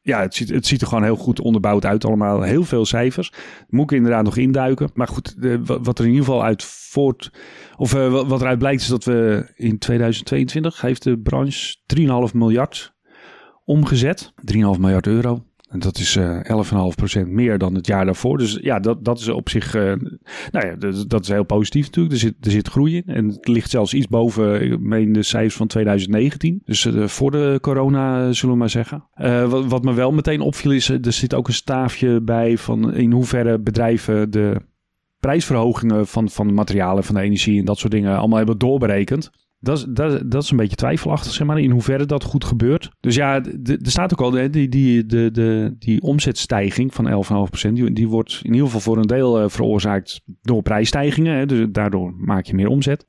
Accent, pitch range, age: Dutch, 105-130 Hz, 40-59